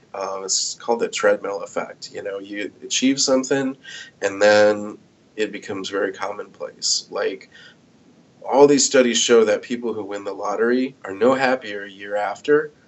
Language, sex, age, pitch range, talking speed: English, male, 30-49, 105-150 Hz, 160 wpm